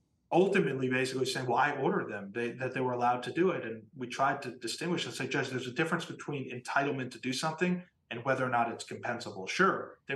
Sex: male